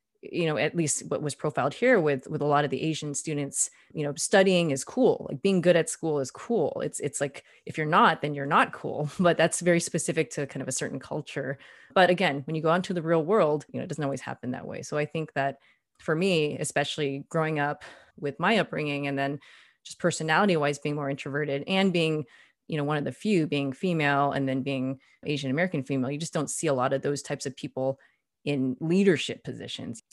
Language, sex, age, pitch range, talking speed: English, female, 30-49, 140-165 Hz, 230 wpm